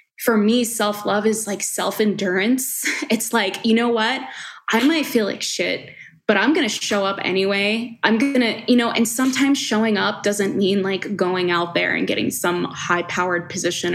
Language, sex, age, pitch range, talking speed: English, female, 20-39, 185-215 Hz, 180 wpm